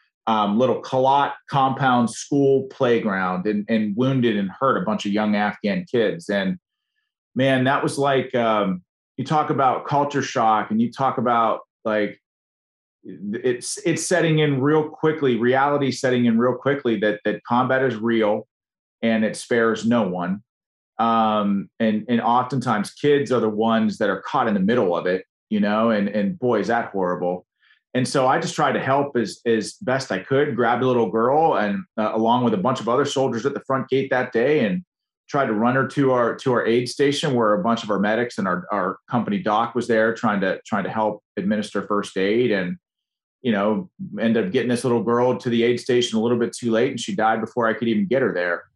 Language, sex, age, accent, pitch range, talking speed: English, male, 30-49, American, 105-135 Hz, 210 wpm